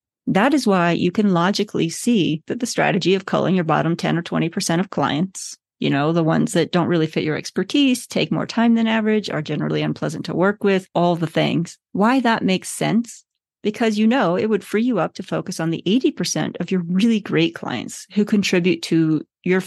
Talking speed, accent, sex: 210 wpm, American, female